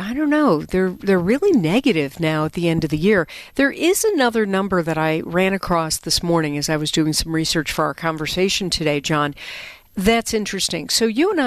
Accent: American